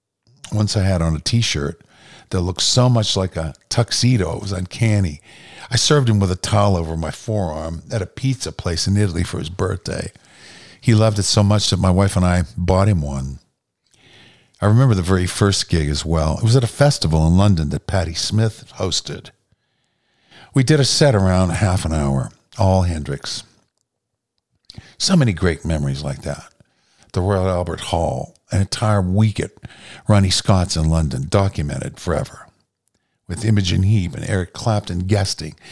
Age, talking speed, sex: 50-69, 175 wpm, male